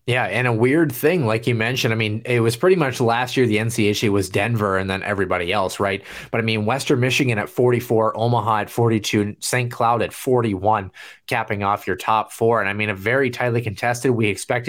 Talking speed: 215 wpm